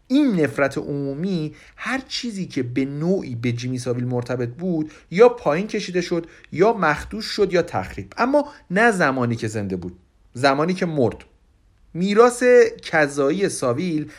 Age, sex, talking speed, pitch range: 50-69, male, 145 wpm, 130-190 Hz